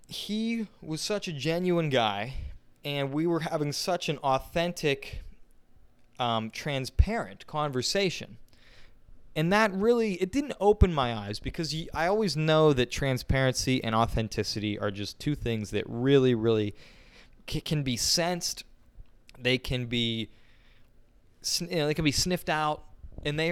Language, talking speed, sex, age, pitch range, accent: English, 140 wpm, male, 20-39, 115-170 Hz, American